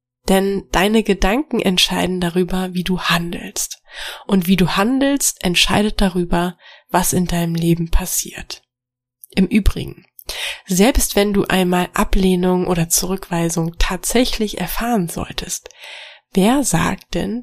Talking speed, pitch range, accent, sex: 115 wpm, 175-225 Hz, German, female